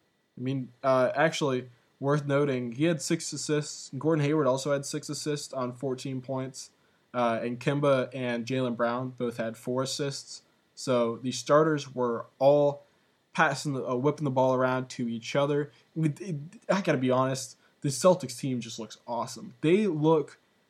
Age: 20-39